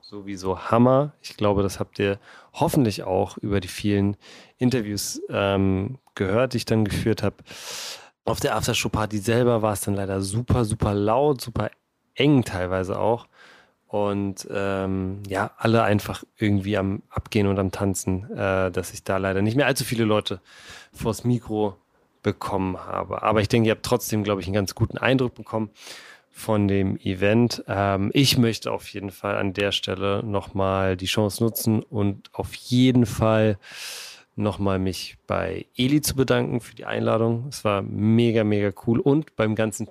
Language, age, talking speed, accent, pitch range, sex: German, 30-49, 165 wpm, German, 100-115 Hz, male